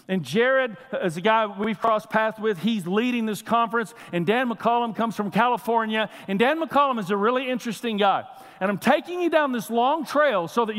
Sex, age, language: male, 50-69, English